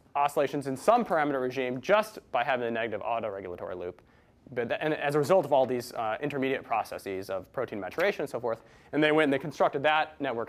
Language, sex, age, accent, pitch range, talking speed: English, male, 30-49, American, 125-165 Hz, 225 wpm